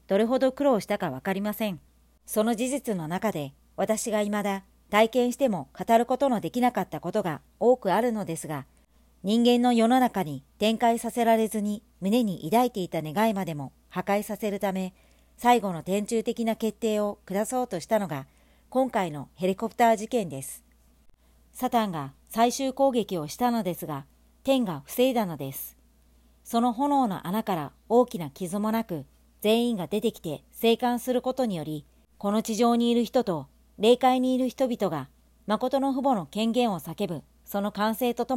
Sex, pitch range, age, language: male, 170-235 Hz, 50-69, Japanese